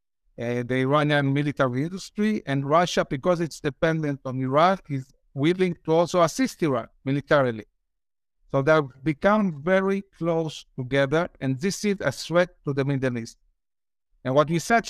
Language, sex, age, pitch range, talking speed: English, male, 60-79, 140-180 Hz, 155 wpm